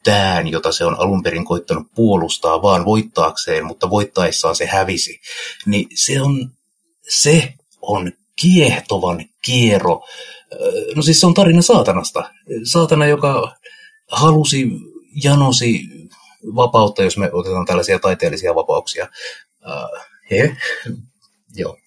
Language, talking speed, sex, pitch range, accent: Finnish, 105 wpm, male, 105-170 Hz, native